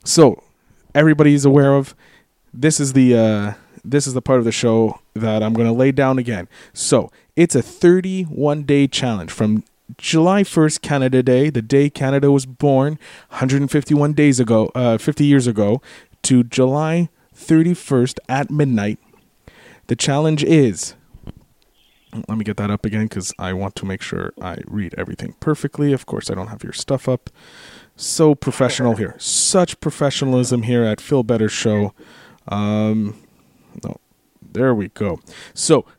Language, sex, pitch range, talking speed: English, male, 110-145 Hz, 155 wpm